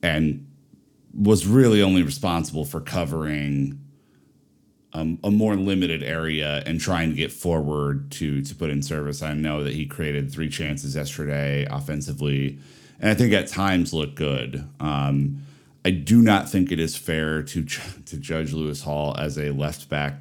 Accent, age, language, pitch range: American, 30-49, English, 70-85 Hz